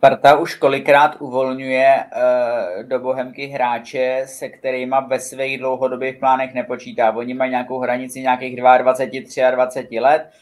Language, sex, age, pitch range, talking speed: Czech, male, 20-39, 130-140 Hz, 130 wpm